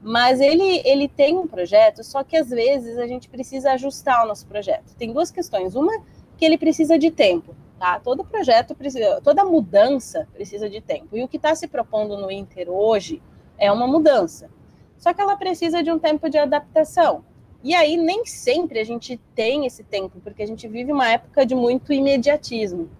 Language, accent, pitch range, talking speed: Portuguese, Brazilian, 220-320 Hz, 190 wpm